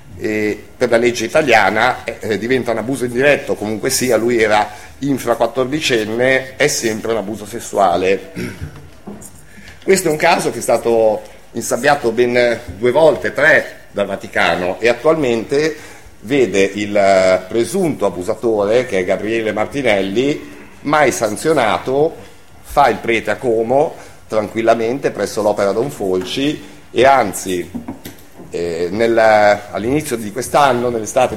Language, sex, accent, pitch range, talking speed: Italian, male, native, 110-150 Hz, 125 wpm